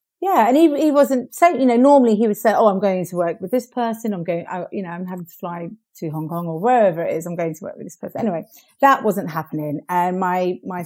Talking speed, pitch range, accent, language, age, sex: 275 wpm, 170-225 Hz, British, English, 40-59, female